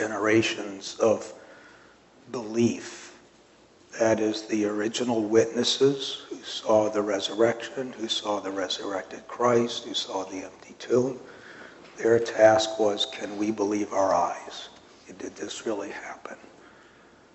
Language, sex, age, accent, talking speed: English, male, 60-79, American, 120 wpm